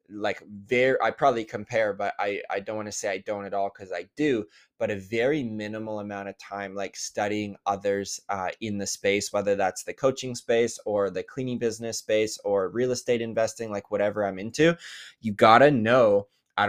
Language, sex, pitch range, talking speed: English, male, 100-115 Hz, 200 wpm